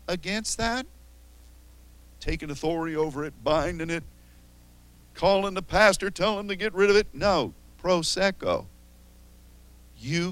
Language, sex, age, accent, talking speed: English, male, 50-69, American, 120 wpm